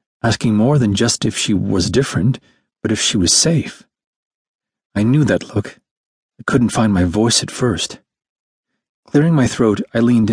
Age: 40-59